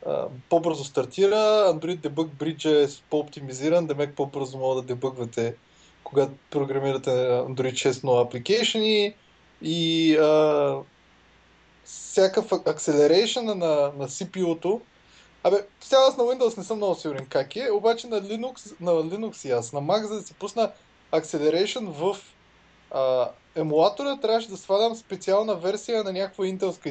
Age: 20-39